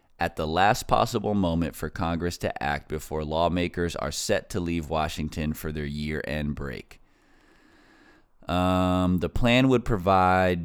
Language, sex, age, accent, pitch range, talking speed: English, male, 20-39, American, 80-95 Hz, 140 wpm